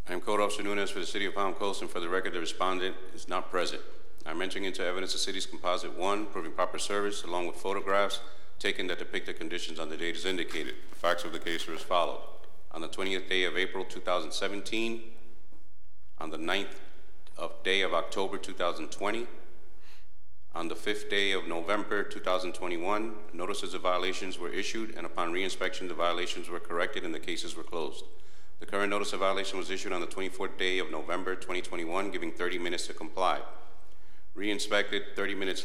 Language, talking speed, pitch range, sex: English, 190 wpm, 90-105 Hz, male